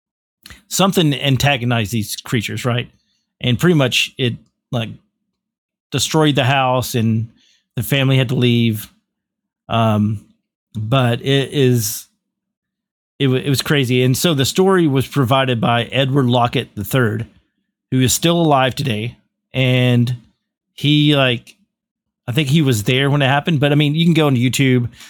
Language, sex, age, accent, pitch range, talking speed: English, male, 40-59, American, 120-150 Hz, 150 wpm